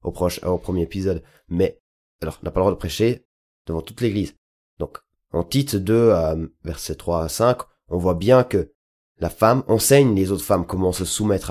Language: French